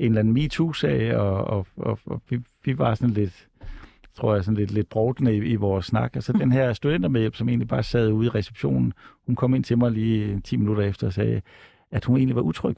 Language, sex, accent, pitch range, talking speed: Danish, male, native, 105-125 Hz, 240 wpm